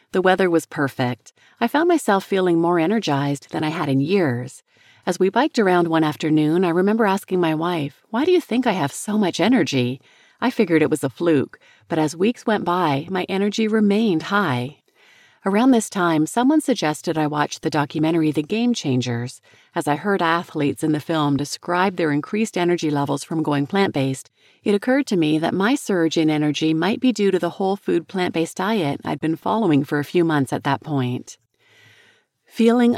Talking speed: 195 wpm